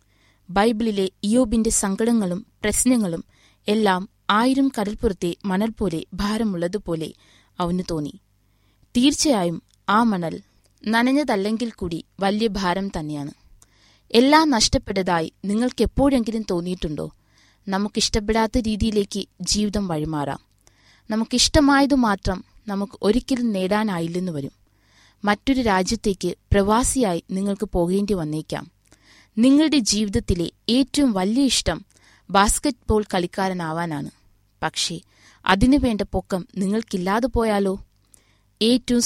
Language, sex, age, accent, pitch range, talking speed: Malayalam, female, 20-39, native, 170-225 Hz, 85 wpm